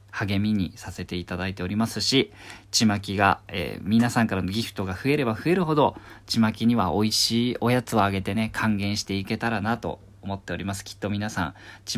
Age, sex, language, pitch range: 40-59, male, Japanese, 95-115 Hz